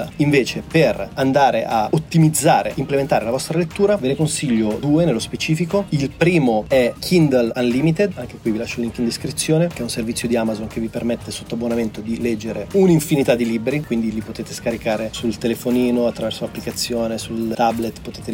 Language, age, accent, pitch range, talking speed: Italian, 30-49, native, 115-135 Hz, 180 wpm